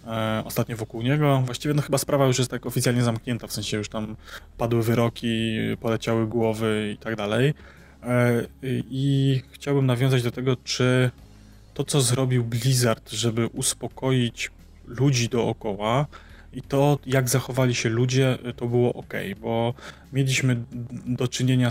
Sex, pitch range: male, 115-130 Hz